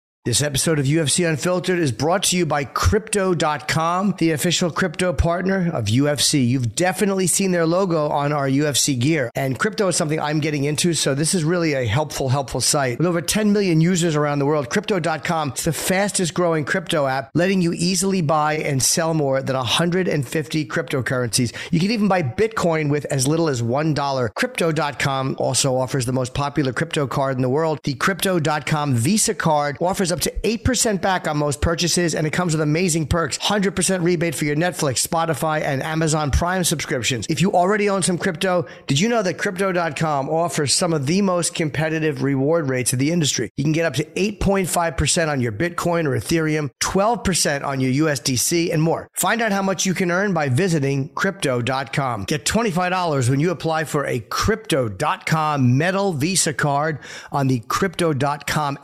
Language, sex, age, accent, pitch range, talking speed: English, male, 40-59, American, 145-180 Hz, 180 wpm